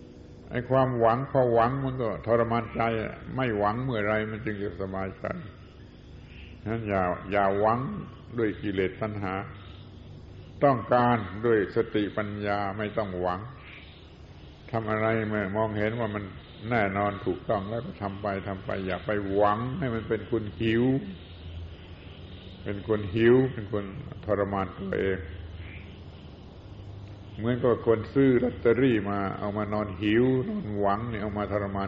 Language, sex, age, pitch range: Thai, male, 70-89, 95-115 Hz